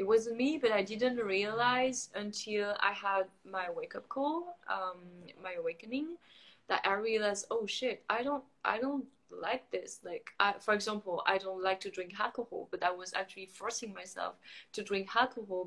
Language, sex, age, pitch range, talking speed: English, female, 20-39, 205-300 Hz, 175 wpm